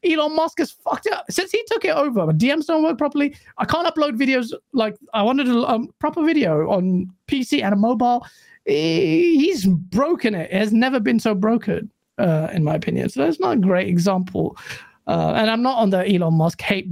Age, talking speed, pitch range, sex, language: 30-49, 215 wpm, 180-275 Hz, male, English